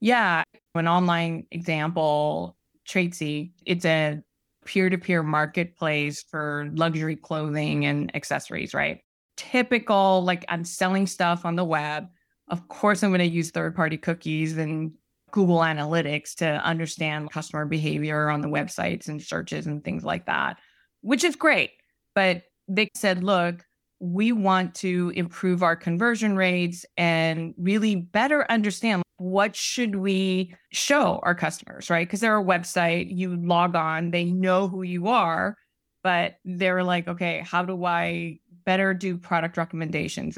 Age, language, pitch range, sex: 20-39, English, 165-195 Hz, female